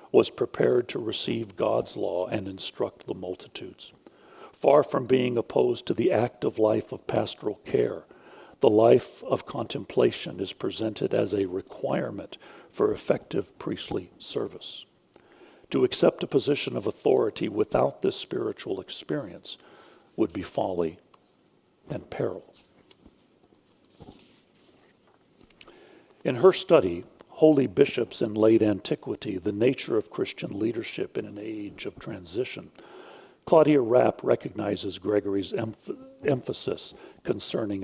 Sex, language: male, English